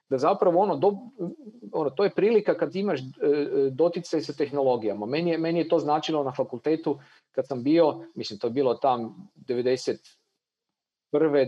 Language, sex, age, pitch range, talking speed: Croatian, male, 40-59, 135-180 Hz, 155 wpm